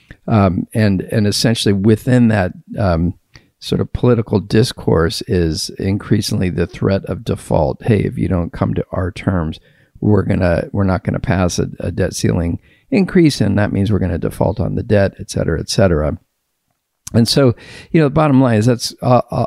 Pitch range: 95-120 Hz